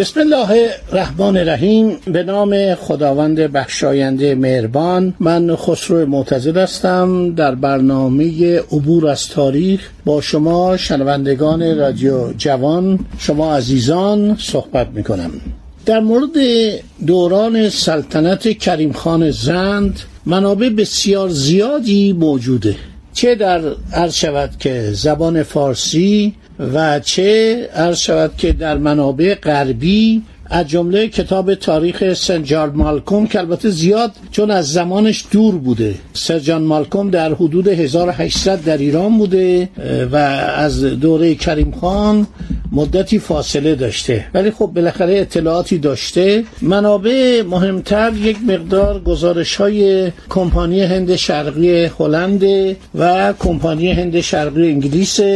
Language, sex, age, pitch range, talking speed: Persian, male, 60-79, 155-195 Hz, 110 wpm